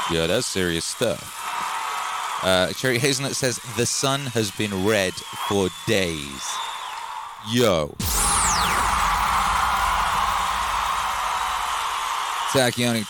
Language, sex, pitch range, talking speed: English, male, 100-120 Hz, 80 wpm